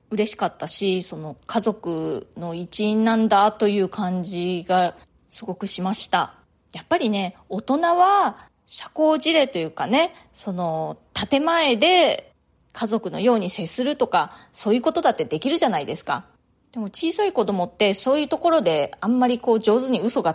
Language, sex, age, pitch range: Japanese, female, 20-39, 185-250 Hz